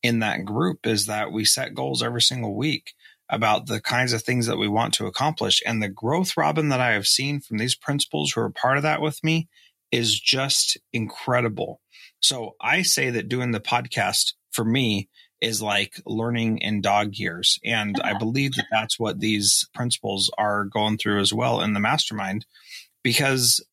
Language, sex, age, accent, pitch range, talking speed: English, male, 30-49, American, 110-130 Hz, 185 wpm